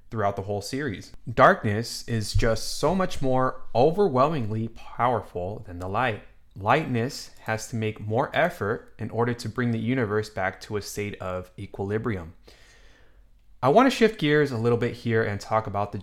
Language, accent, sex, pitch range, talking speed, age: English, American, male, 100-125 Hz, 170 wpm, 20-39